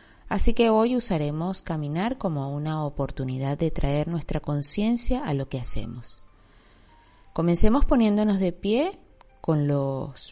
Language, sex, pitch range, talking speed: Spanish, female, 140-215 Hz, 130 wpm